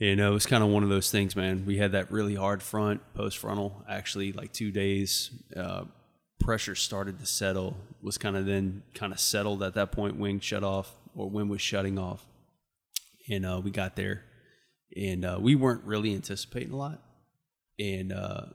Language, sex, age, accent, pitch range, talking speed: English, male, 20-39, American, 95-110 Hz, 195 wpm